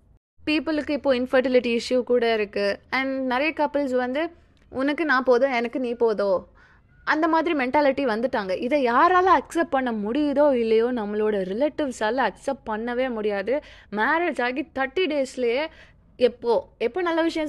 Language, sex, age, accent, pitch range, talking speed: Tamil, female, 20-39, native, 220-285 Hz, 135 wpm